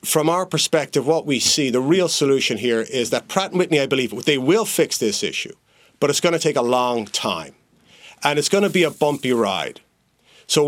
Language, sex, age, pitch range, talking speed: English, male, 40-59, 120-160 Hz, 215 wpm